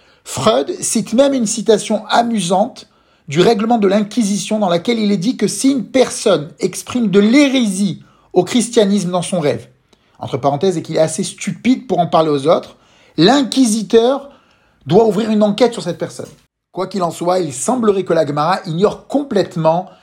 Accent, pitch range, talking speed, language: French, 160-215 Hz, 170 wpm, French